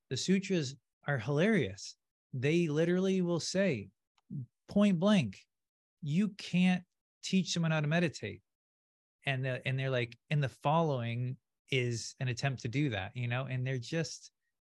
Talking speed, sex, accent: 145 wpm, male, American